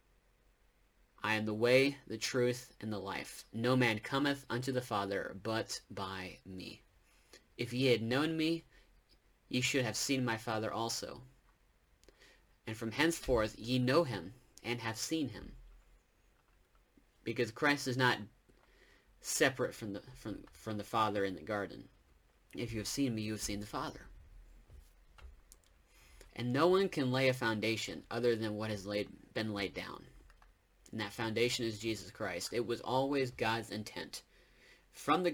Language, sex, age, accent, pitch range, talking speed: English, male, 30-49, American, 100-125 Hz, 155 wpm